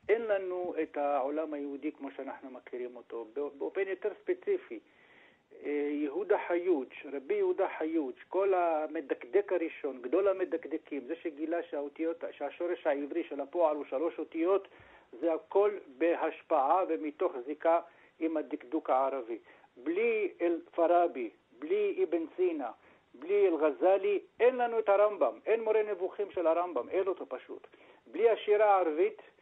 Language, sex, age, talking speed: Hebrew, male, 60-79, 125 wpm